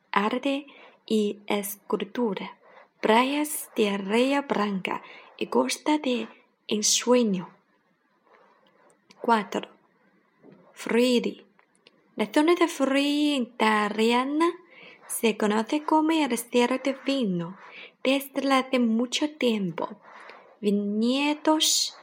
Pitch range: 220-290 Hz